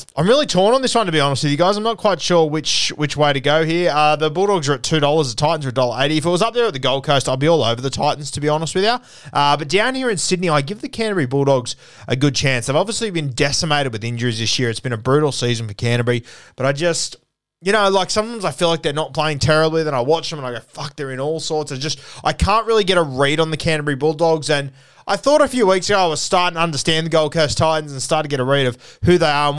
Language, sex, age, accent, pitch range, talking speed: English, male, 20-39, Australian, 130-165 Hz, 300 wpm